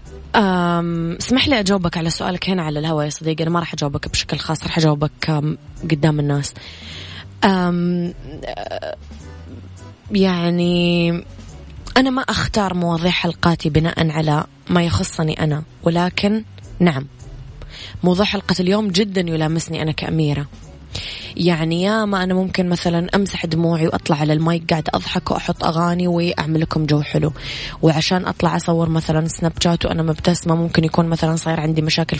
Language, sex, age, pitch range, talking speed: Arabic, female, 20-39, 145-175 Hz, 135 wpm